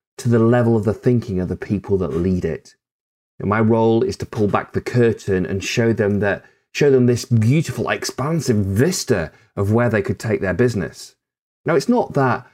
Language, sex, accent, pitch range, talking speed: English, male, British, 100-130 Hz, 200 wpm